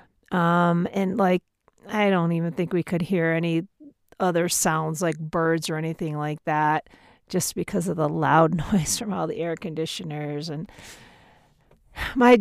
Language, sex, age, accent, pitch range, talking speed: English, female, 40-59, American, 165-210 Hz, 155 wpm